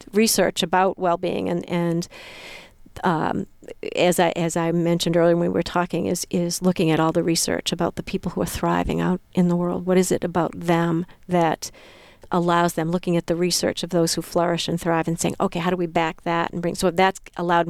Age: 40-59